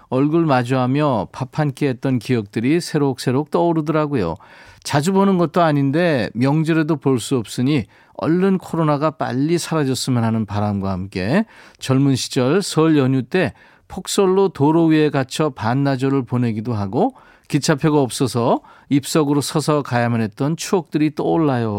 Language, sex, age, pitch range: Korean, male, 40-59, 125-160 Hz